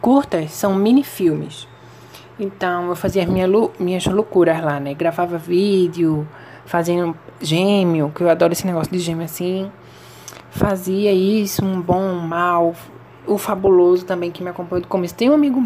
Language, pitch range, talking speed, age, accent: Portuguese, 170-200 Hz, 155 wpm, 20-39, Brazilian